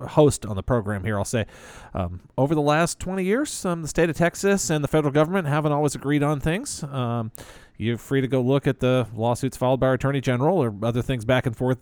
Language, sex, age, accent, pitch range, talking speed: English, male, 40-59, American, 110-135 Hz, 240 wpm